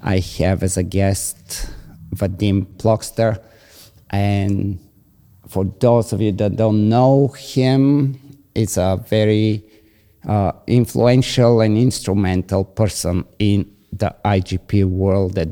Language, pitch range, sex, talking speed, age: English, 90-105 Hz, male, 110 wpm, 50-69